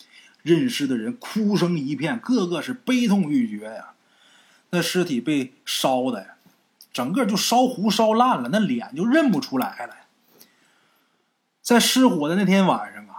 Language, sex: Chinese, male